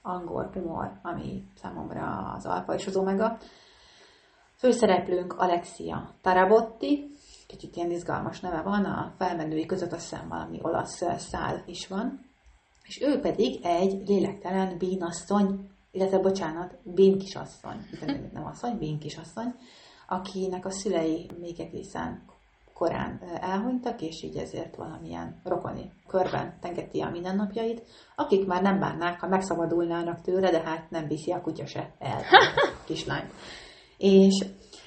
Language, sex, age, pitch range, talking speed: Hungarian, female, 30-49, 175-195 Hz, 130 wpm